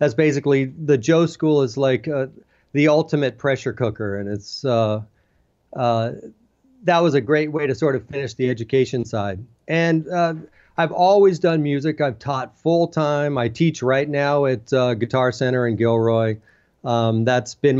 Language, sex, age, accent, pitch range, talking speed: English, male, 40-59, American, 125-155 Hz, 170 wpm